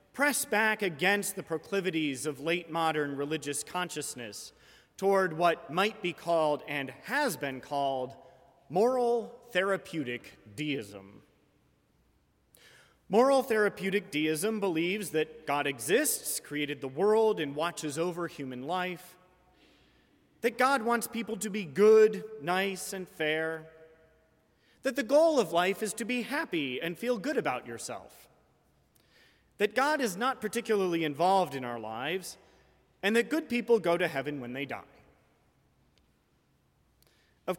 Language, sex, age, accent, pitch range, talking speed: English, male, 30-49, American, 150-205 Hz, 130 wpm